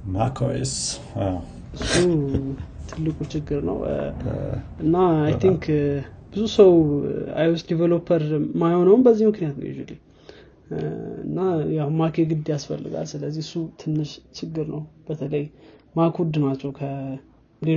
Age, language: 20-39, Amharic